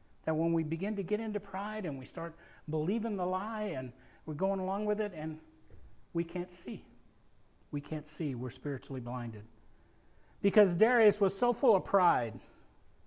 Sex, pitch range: male, 150-220 Hz